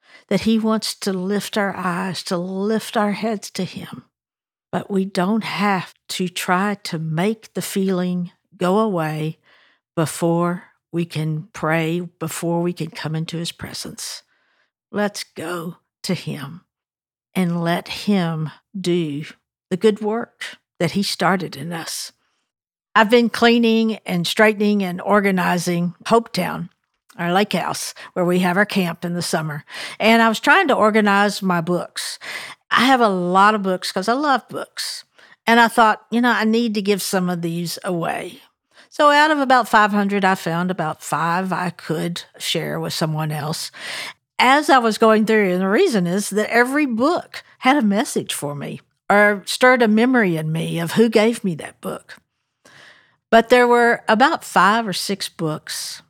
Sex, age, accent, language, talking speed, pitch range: female, 60-79, American, English, 165 wpm, 170-220 Hz